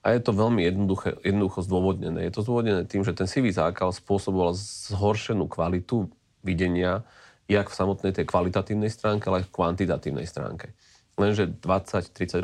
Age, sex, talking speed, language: 30-49, male, 140 wpm, Slovak